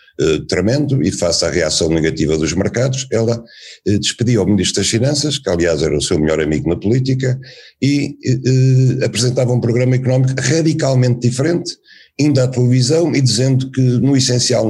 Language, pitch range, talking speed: Portuguese, 90-125 Hz, 155 wpm